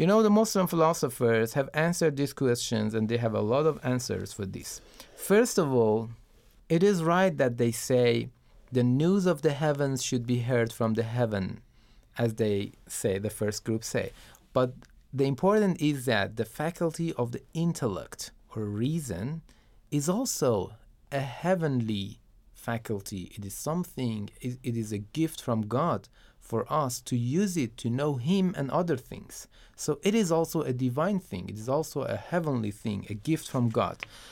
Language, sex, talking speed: Persian, male, 175 wpm